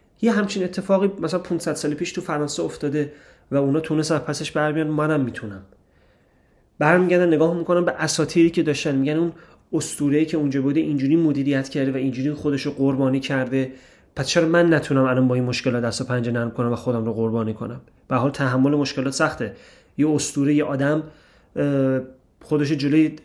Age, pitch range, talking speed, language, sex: 30-49, 125-160 Hz, 170 wpm, Persian, male